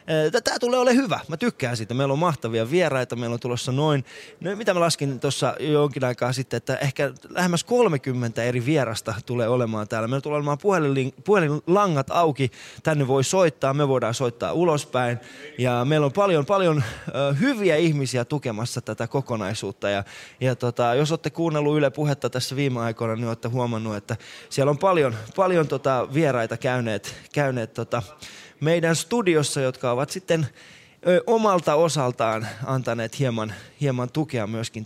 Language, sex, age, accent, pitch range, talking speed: Finnish, male, 20-39, native, 120-160 Hz, 160 wpm